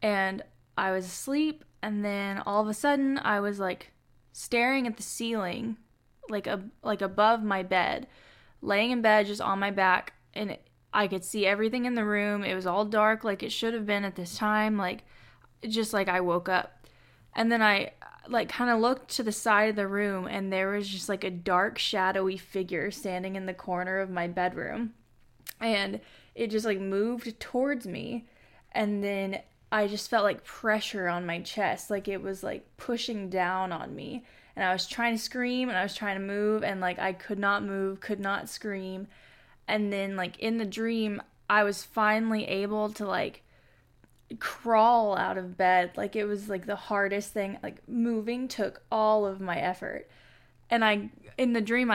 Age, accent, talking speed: 10-29, American, 190 wpm